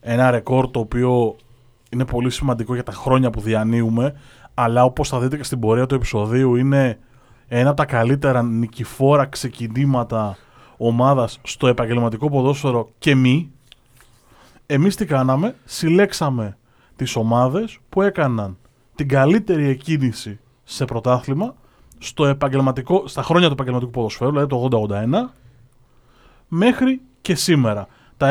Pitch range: 120-145 Hz